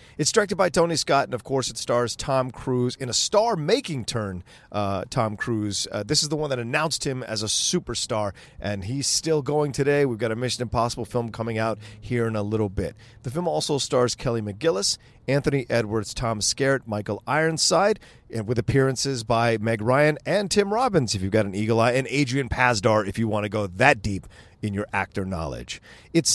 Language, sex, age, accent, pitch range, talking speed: English, male, 40-59, American, 105-145 Hz, 205 wpm